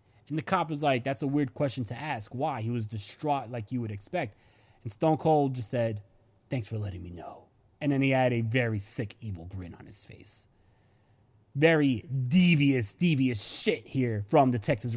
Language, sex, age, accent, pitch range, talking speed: English, male, 30-49, American, 125-190 Hz, 195 wpm